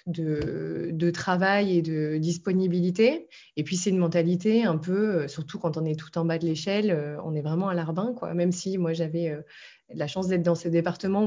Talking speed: 200 wpm